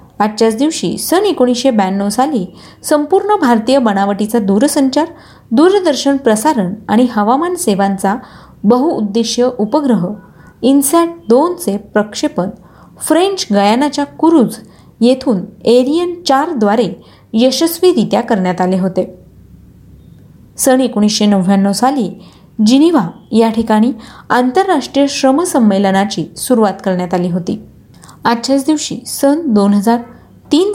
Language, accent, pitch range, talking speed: Marathi, native, 205-285 Hz, 90 wpm